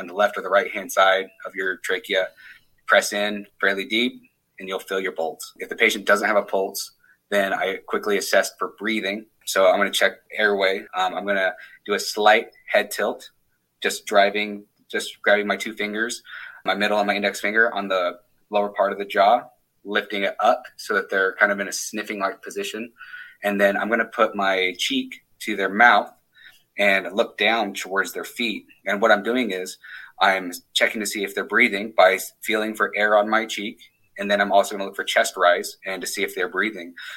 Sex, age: male, 30-49